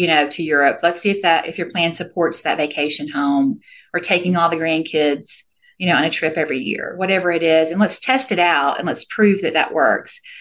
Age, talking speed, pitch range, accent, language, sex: 40-59, 235 wpm, 165-205 Hz, American, English, female